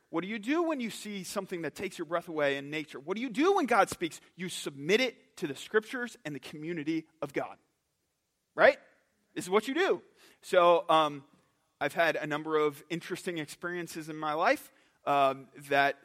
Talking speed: 200 wpm